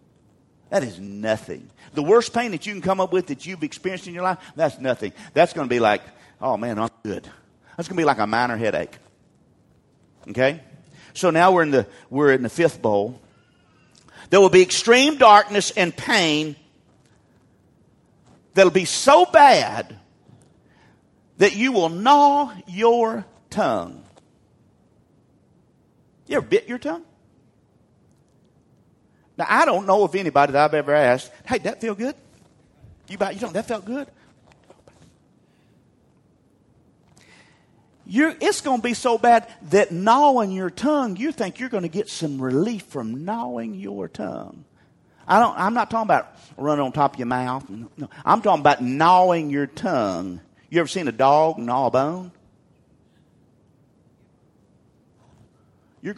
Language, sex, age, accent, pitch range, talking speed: English, male, 50-69, American, 140-220 Hz, 150 wpm